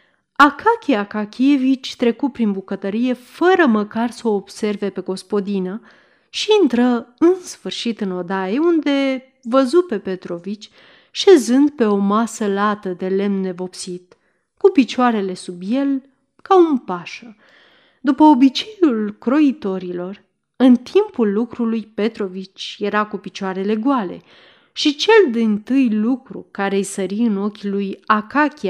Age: 30-49